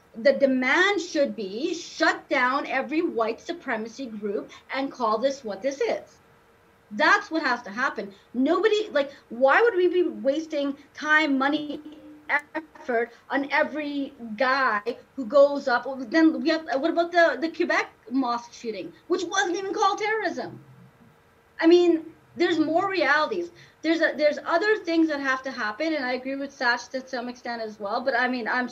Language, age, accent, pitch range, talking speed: English, 30-49, American, 240-300 Hz, 165 wpm